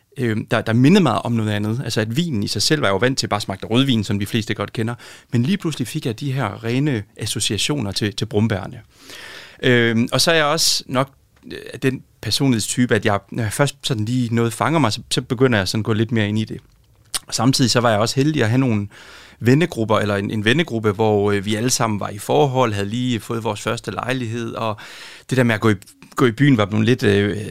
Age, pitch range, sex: 30-49, 105-130 Hz, male